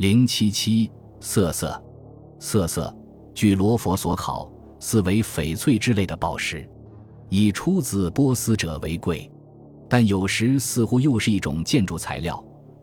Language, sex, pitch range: Chinese, male, 90-120 Hz